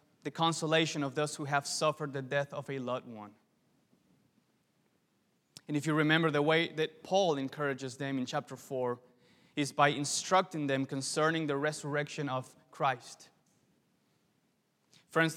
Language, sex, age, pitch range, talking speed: English, male, 20-39, 150-180 Hz, 140 wpm